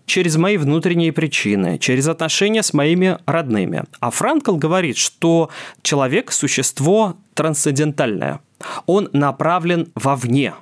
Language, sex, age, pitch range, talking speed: Russian, male, 20-39, 130-180 Hz, 105 wpm